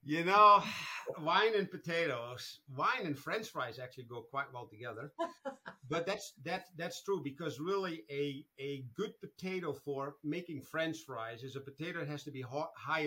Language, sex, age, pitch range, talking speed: English, male, 50-69, 130-160 Hz, 175 wpm